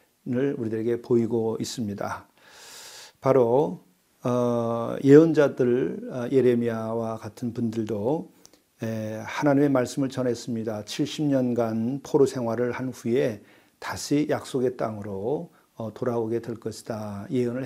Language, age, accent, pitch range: Korean, 40-59, native, 115-135 Hz